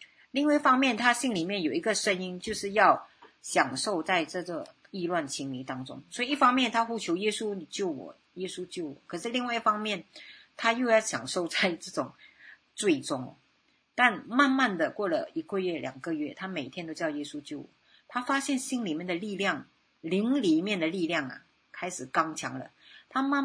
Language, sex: Chinese, female